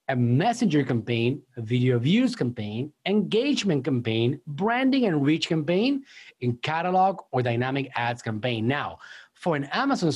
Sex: male